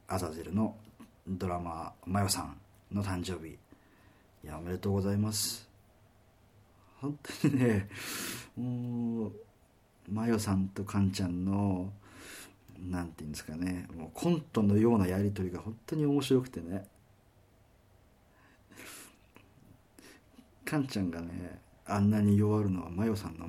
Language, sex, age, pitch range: Japanese, male, 40-59, 90-110 Hz